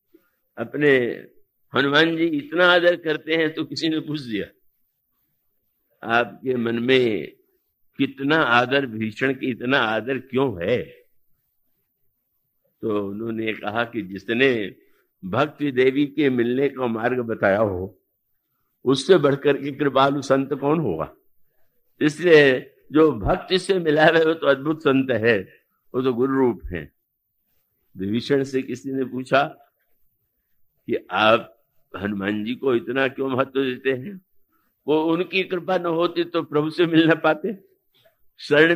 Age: 60-79